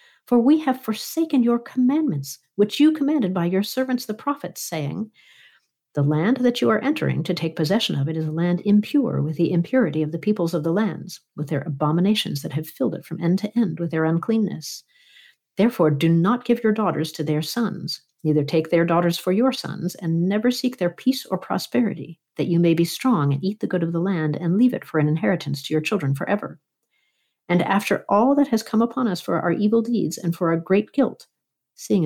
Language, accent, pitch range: English, American, 165-230 Hz